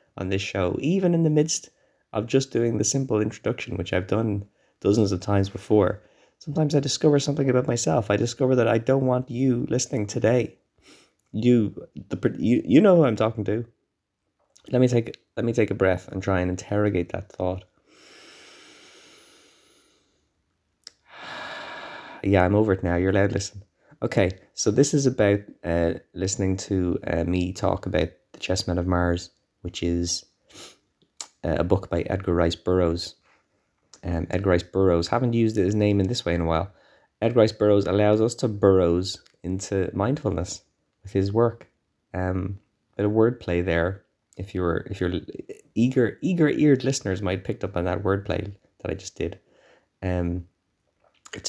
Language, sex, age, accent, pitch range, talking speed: English, male, 20-39, Irish, 90-120 Hz, 165 wpm